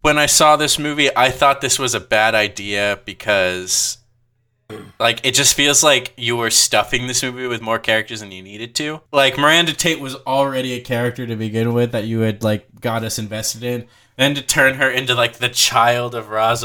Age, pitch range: 20-39, 115-140 Hz